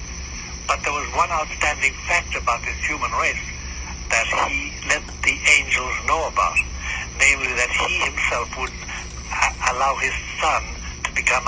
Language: English